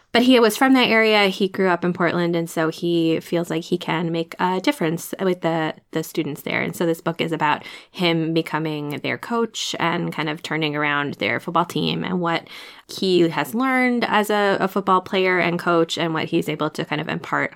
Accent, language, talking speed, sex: American, English, 220 wpm, female